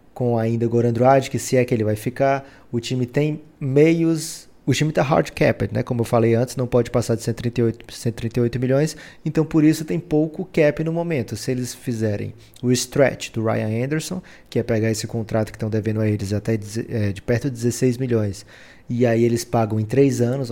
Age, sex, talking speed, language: 20-39, male, 215 wpm, Portuguese